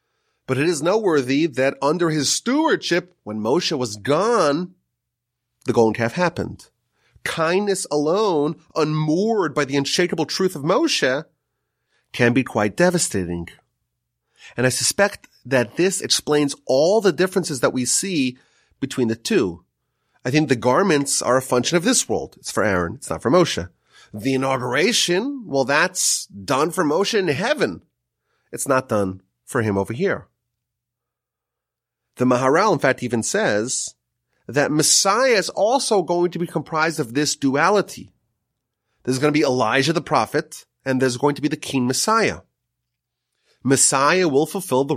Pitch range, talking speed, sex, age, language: 120-160 Hz, 150 wpm, male, 30-49, English